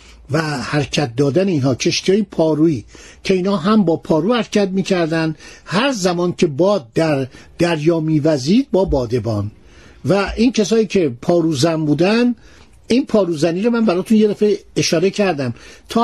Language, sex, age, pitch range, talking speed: Persian, male, 50-69, 160-220 Hz, 140 wpm